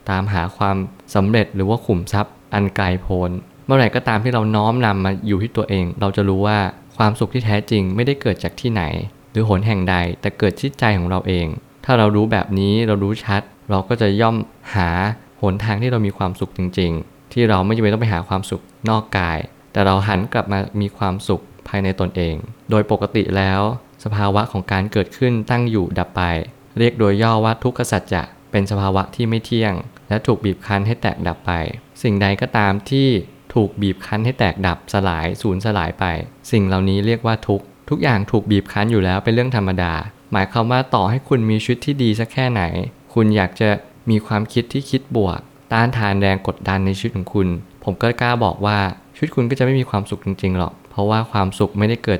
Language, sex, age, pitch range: Thai, male, 20-39, 95-115 Hz